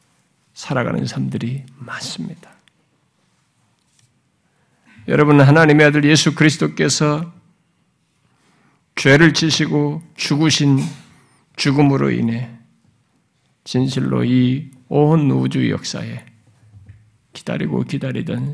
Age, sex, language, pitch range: 50-69, male, Korean, 120-155 Hz